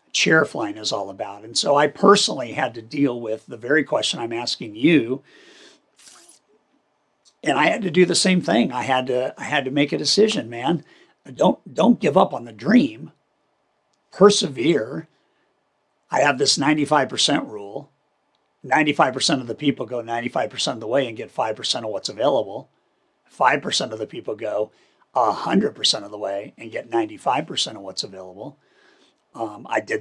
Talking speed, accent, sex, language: 180 wpm, American, male, English